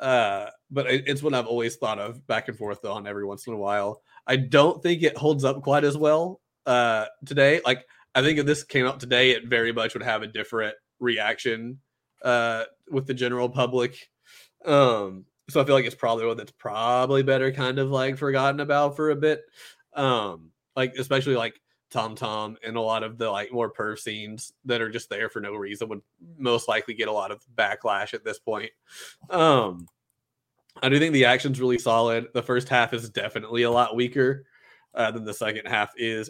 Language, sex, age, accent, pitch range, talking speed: English, male, 20-39, American, 115-140 Hz, 205 wpm